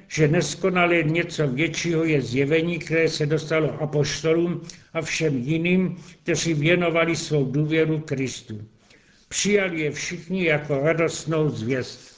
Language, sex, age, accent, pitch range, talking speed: Czech, male, 70-89, native, 145-170 Hz, 120 wpm